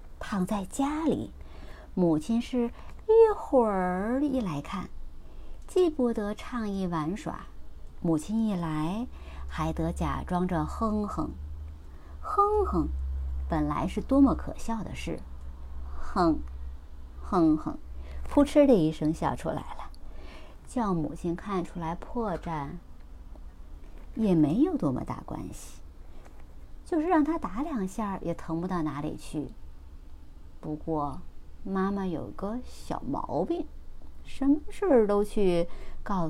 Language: Chinese